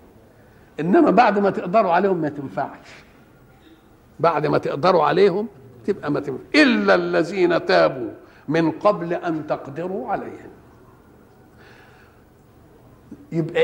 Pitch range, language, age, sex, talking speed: 165-240 Hz, Arabic, 50-69, male, 100 wpm